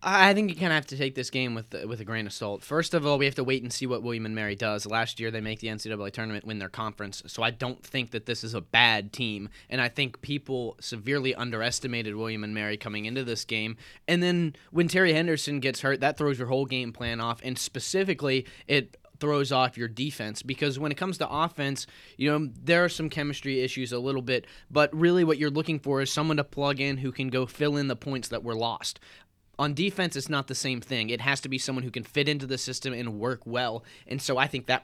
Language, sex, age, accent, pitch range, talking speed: English, male, 20-39, American, 120-145 Hz, 255 wpm